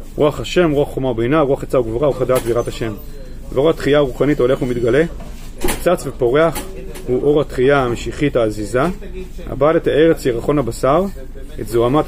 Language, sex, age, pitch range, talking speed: Hebrew, male, 40-59, 120-150 Hz, 150 wpm